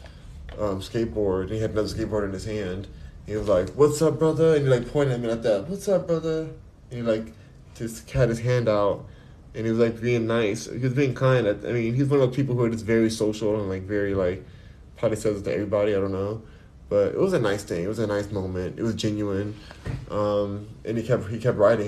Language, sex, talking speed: English, male, 250 wpm